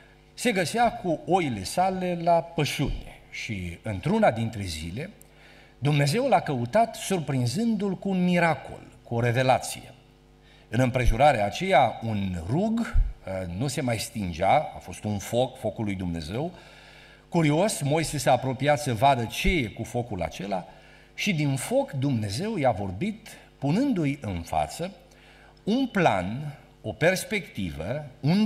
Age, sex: 50-69, male